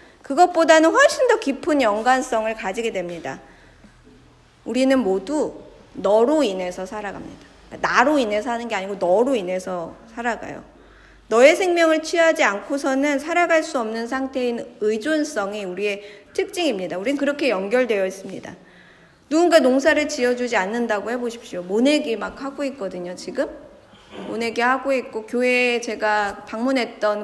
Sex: female